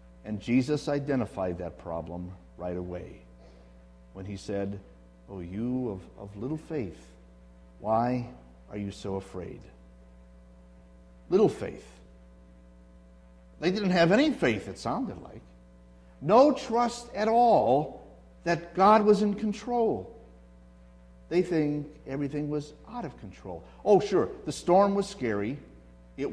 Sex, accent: male, American